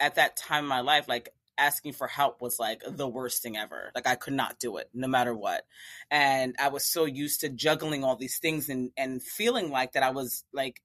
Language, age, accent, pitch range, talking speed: English, 20-39, American, 125-165 Hz, 240 wpm